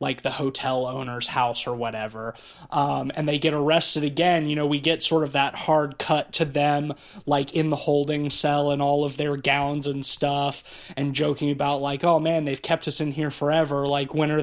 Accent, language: American, English